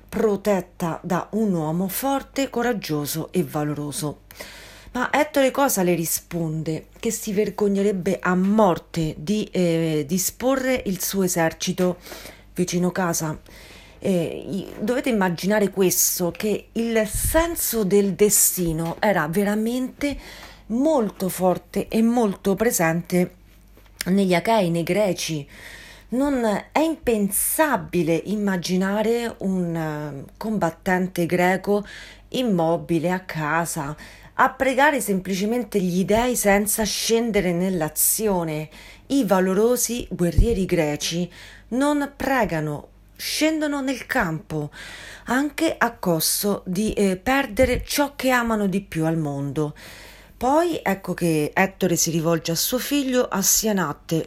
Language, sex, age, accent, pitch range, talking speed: Italian, female, 40-59, native, 165-225 Hz, 105 wpm